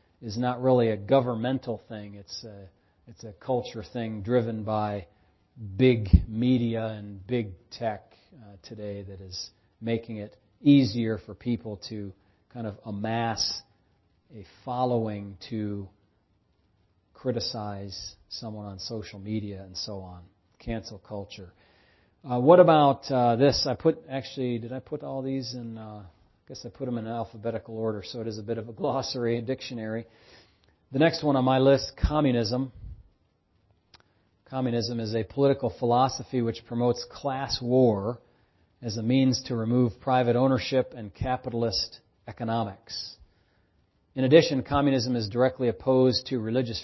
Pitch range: 105-125 Hz